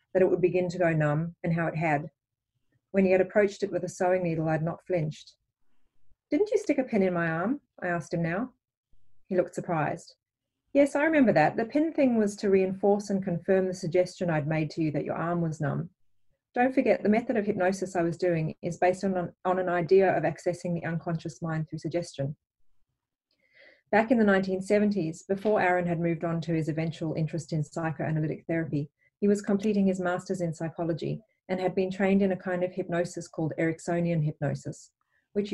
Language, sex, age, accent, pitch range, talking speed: English, female, 30-49, Australian, 160-190 Hz, 200 wpm